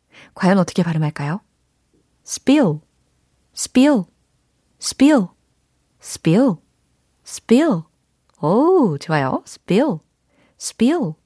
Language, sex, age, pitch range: Korean, female, 30-49, 155-250 Hz